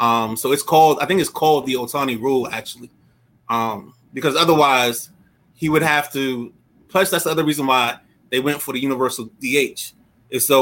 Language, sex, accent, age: English, male, American, 20-39